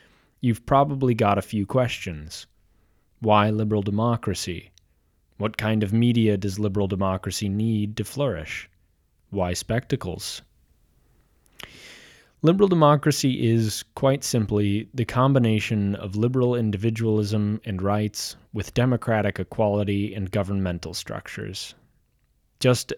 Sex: male